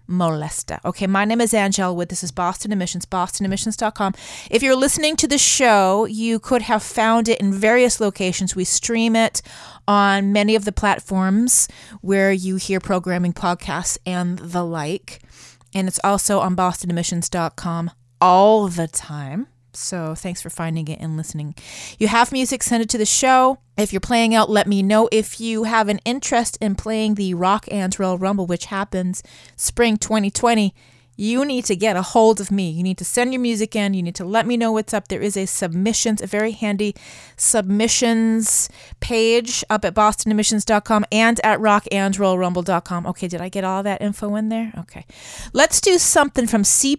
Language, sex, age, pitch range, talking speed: English, female, 30-49, 180-225 Hz, 180 wpm